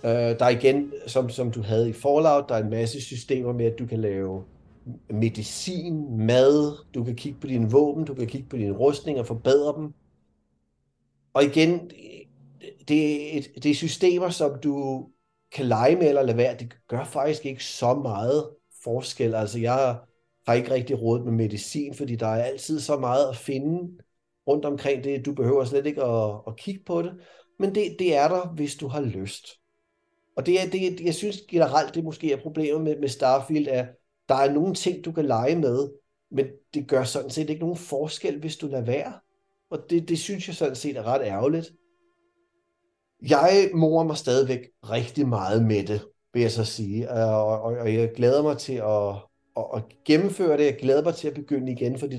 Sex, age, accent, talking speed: male, 30-49, native, 195 wpm